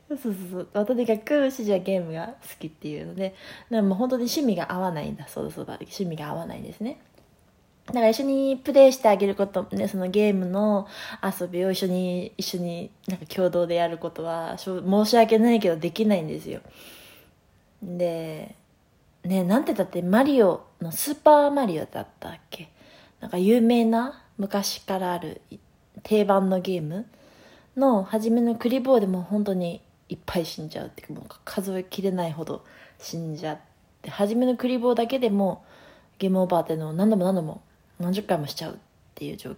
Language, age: Japanese, 20-39